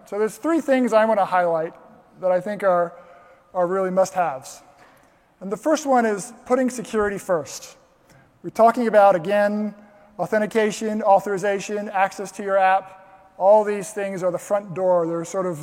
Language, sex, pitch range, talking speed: English, male, 175-205 Hz, 165 wpm